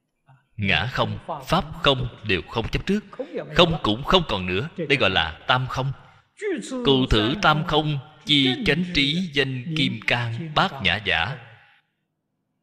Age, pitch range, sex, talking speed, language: 20-39, 105-150 Hz, male, 145 wpm, Vietnamese